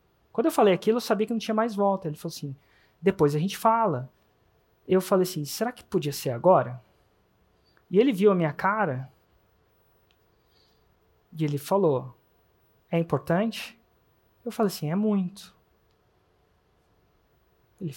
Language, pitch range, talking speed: Portuguese, 165-225 Hz, 145 wpm